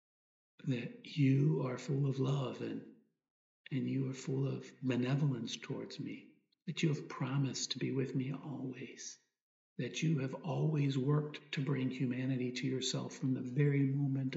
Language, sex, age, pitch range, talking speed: English, male, 50-69, 130-150 Hz, 160 wpm